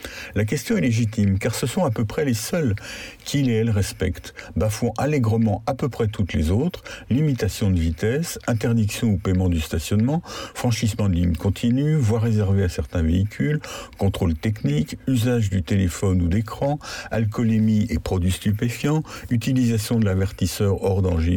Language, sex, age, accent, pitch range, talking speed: French, male, 60-79, French, 95-120 Hz, 155 wpm